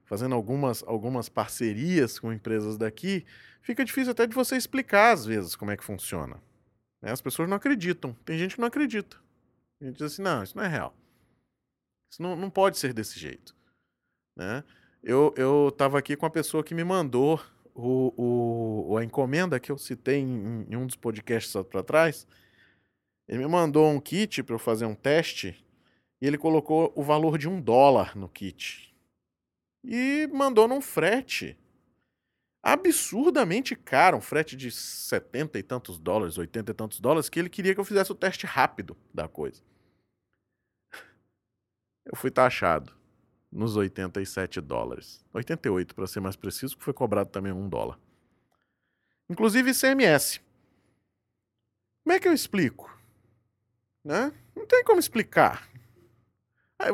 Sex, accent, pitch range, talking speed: male, Brazilian, 110-190 Hz, 155 wpm